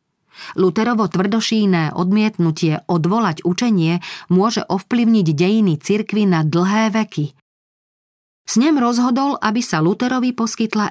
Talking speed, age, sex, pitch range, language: 105 wpm, 40-59, female, 160-210 Hz, Slovak